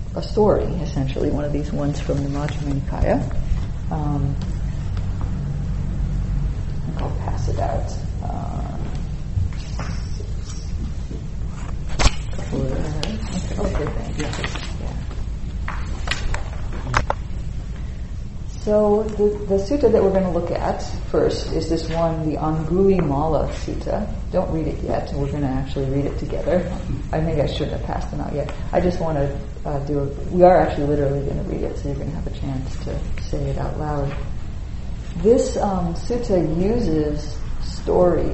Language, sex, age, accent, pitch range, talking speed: English, female, 40-59, American, 100-155 Hz, 135 wpm